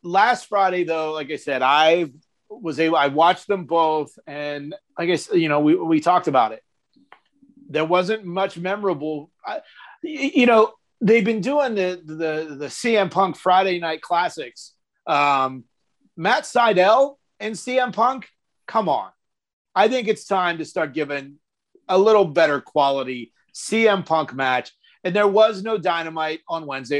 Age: 40-59